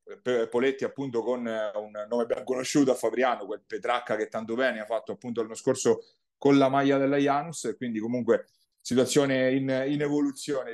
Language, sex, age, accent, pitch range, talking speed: Italian, male, 30-49, native, 115-135 Hz, 175 wpm